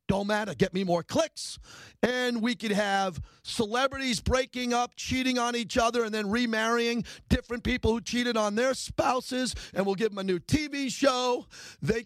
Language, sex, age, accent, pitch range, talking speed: English, male, 40-59, American, 215-255 Hz, 180 wpm